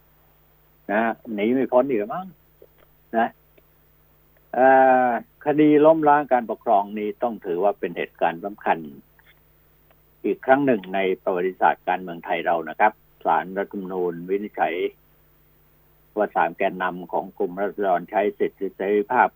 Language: Thai